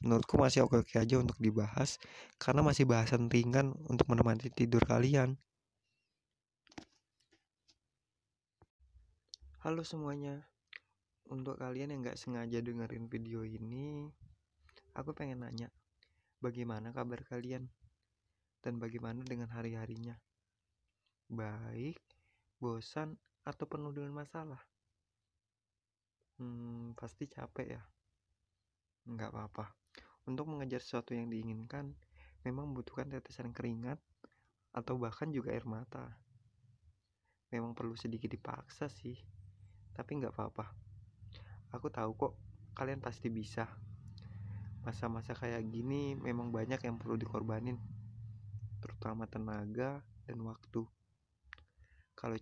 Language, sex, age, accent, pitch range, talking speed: Indonesian, male, 20-39, native, 105-125 Hz, 100 wpm